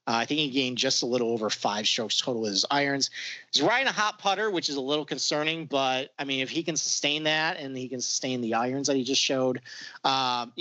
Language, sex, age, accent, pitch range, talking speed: English, male, 40-59, American, 120-155 Hz, 250 wpm